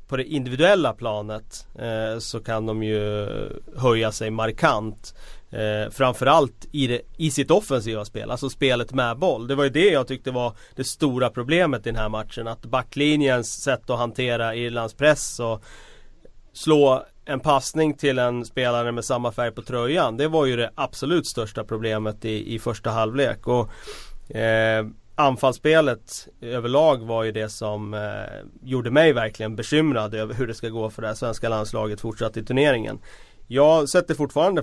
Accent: native